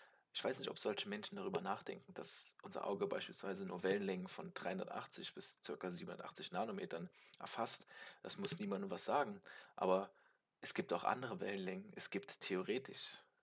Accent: German